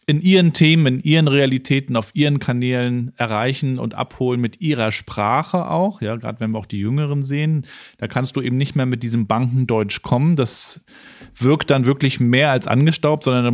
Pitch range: 115-140 Hz